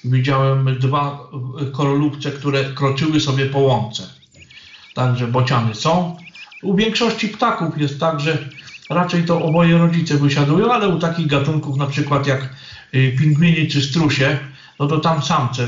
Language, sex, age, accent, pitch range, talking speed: Polish, male, 40-59, native, 135-160 Hz, 140 wpm